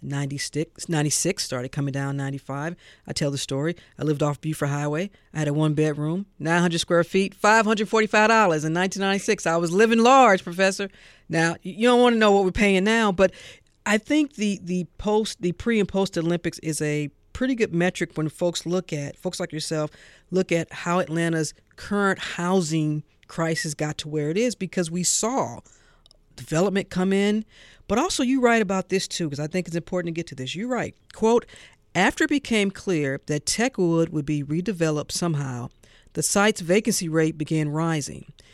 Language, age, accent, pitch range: English, 40-59, American, 150-190 Hz